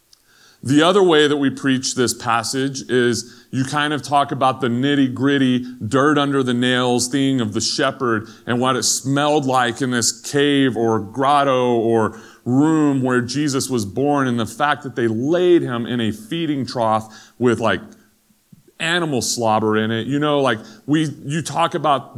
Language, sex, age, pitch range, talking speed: English, male, 30-49, 110-140 Hz, 175 wpm